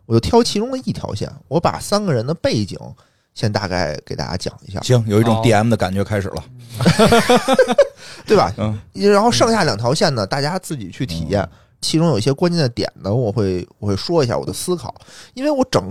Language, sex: Chinese, male